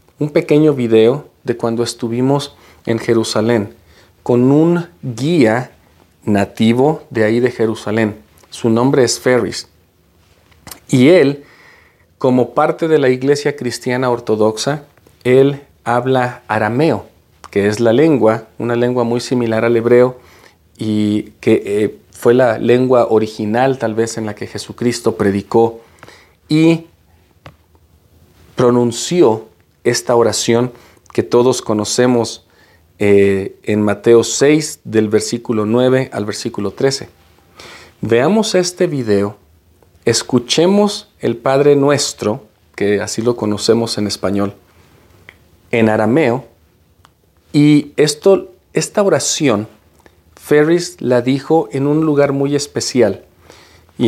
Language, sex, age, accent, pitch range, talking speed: Spanish, male, 40-59, Mexican, 105-130 Hz, 110 wpm